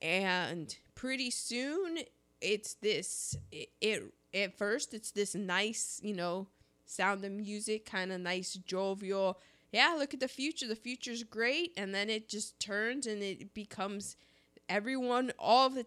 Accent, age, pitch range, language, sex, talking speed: American, 20-39, 195-250 Hz, English, female, 155 wpm